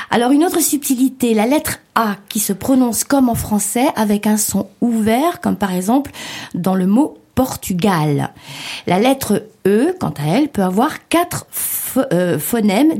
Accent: French